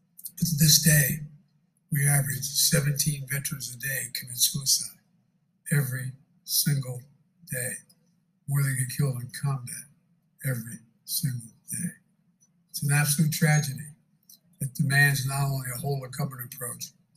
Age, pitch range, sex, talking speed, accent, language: 60-79, 135-170 Hz, male, 120 wpm, American, English